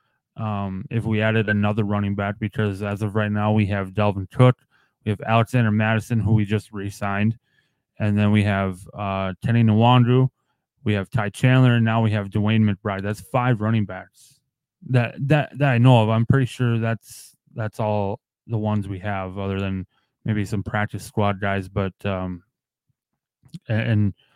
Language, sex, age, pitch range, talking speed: English, male, 20-39, 100-115 Hz, 175 wpm